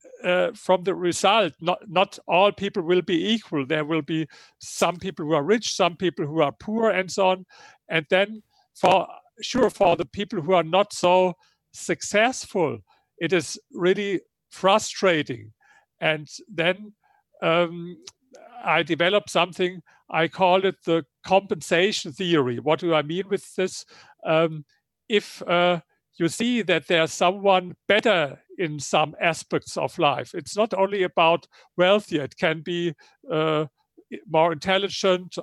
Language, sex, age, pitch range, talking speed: English, male, 50-69, 165-205 Hz, 145 wpm